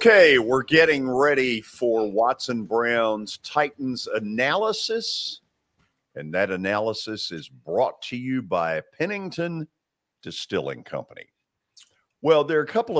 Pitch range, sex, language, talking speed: 105-155 Hz, male, English, 115 wpm